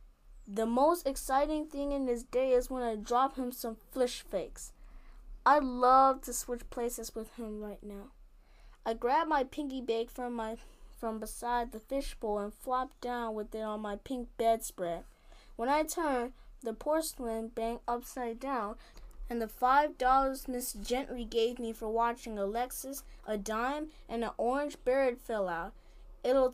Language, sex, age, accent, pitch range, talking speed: English, female, 20-39, American, 230-270 Hz, 165 wpm